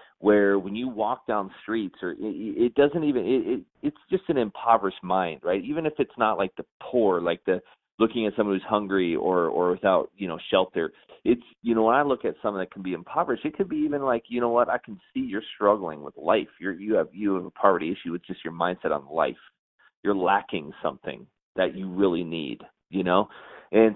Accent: American